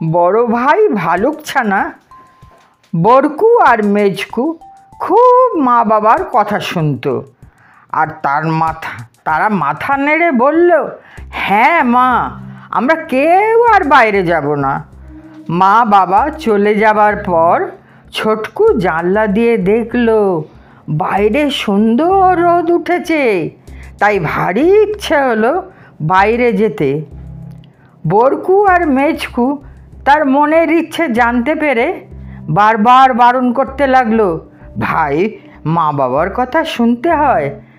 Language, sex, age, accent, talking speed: Bengali, female, 50-69, native, 100 wpm